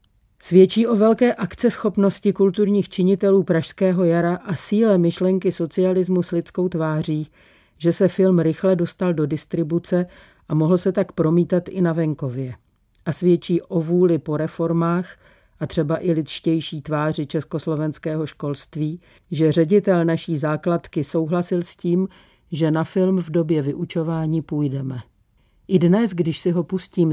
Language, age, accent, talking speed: Czech, 40-59, native, 140 wpm